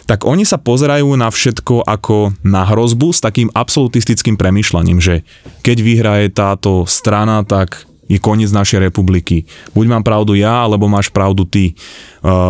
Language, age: Slovak, 20-39